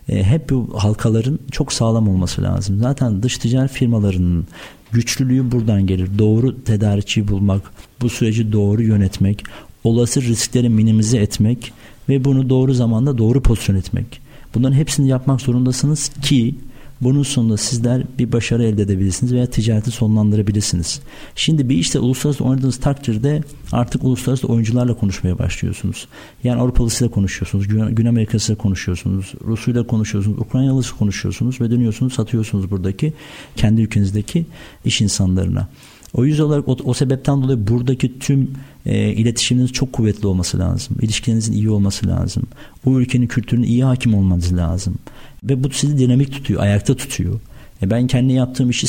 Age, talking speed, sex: 50-69, 140 wpm, male